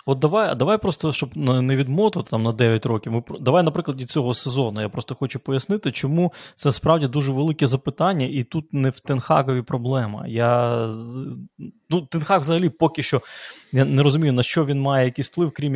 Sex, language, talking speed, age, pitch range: male, Ukrainian, 175 wpm, 20-39, 125-155 Hz